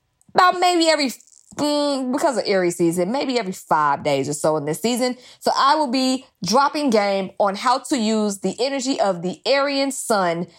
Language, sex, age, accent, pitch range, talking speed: English, female, 20-39, American, 195-265 Hz, 185 wpm